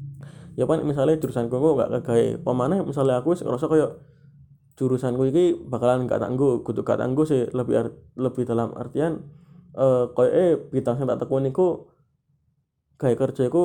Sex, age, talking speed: male, 20-39, 165 wpm